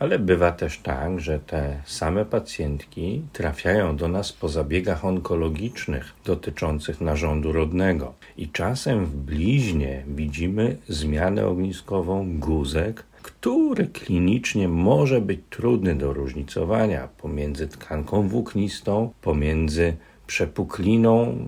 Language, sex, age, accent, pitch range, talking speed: Polish, male, 50-69, native, 75-105 Hz, 105 wpm